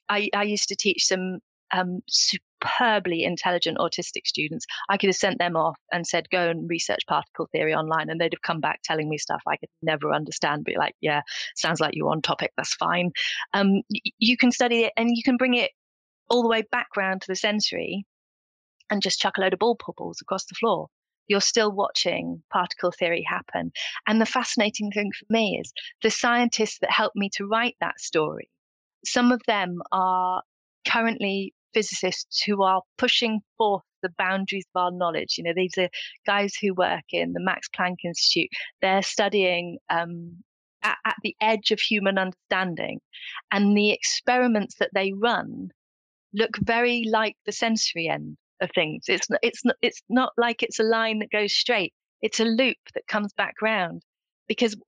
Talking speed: 185 wpm